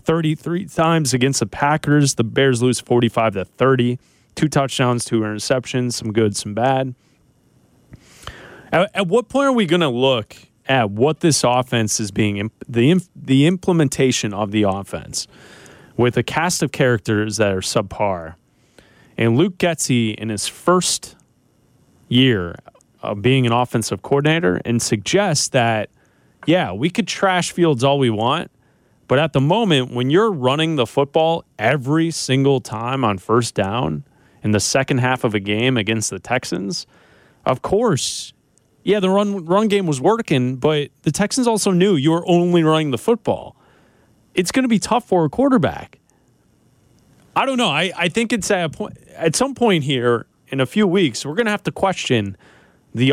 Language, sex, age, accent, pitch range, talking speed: English, male, 30-49, American, 115-170 Hz, 165 wpm